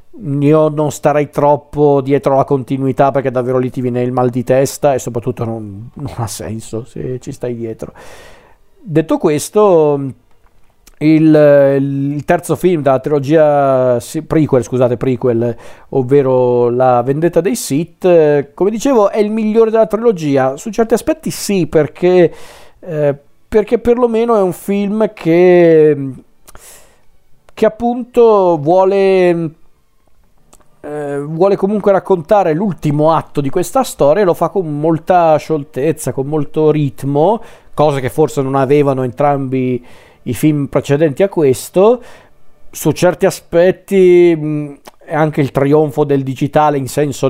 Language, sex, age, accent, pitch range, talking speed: Italian, male, 40-59, native, 130-170 Hz, 135 wpm